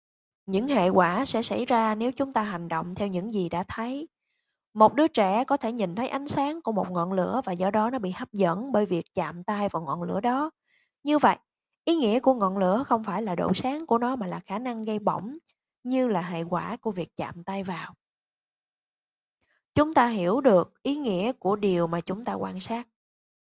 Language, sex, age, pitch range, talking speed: Vietnamese, female, 10-29, 185-255 Hz, 220 wpm